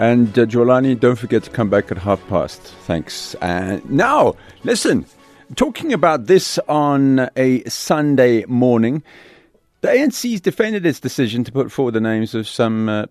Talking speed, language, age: 160 wpm, English, 40-59